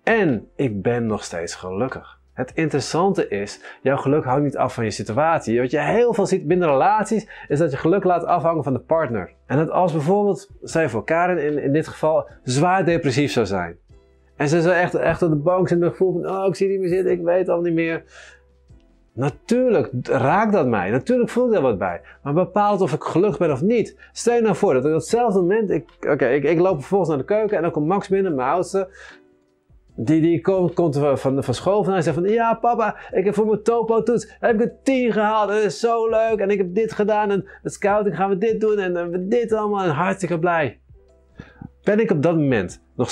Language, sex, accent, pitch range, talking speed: Dutch, male, Dutch, 145-205 Hz, 235 wpm